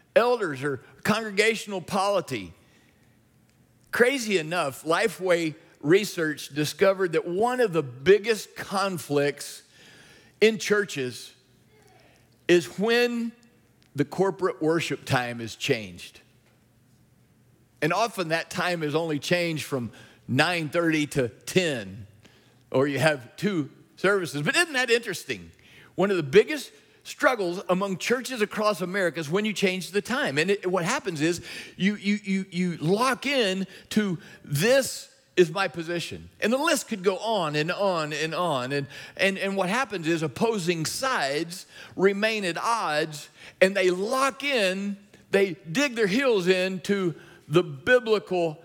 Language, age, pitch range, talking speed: English, 50-69, 145-200 Hz, 135 wpm